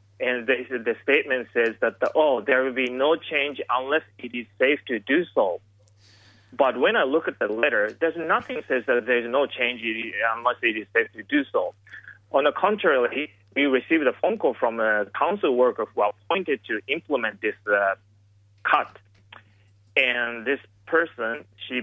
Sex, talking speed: male, 180 wpm